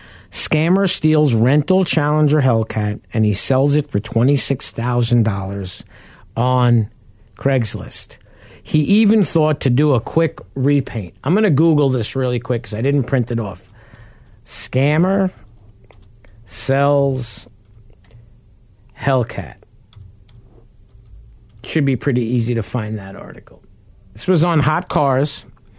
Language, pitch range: English, 120-155 Hz